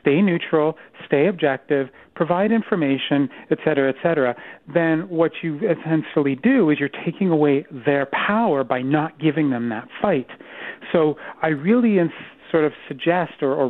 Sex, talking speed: male, 155 wpm